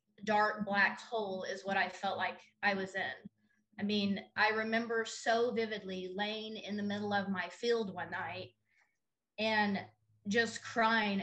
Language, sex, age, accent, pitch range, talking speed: English, female, 20-39, American, 195-230 Hz, 155 wpm